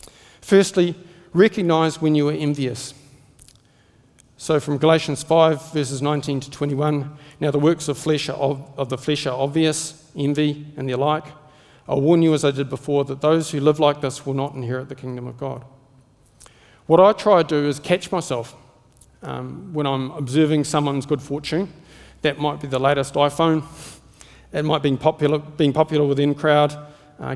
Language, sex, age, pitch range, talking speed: English, male, 40-59, 135-155 Hz, 165 wpm